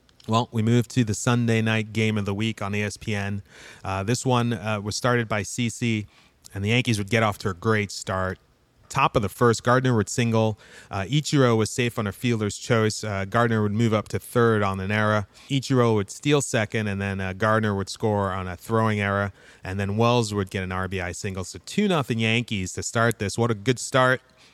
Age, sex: 30-49, male